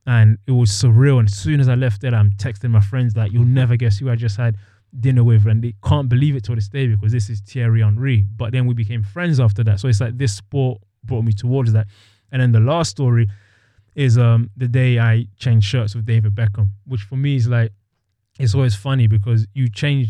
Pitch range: 105-125 Hz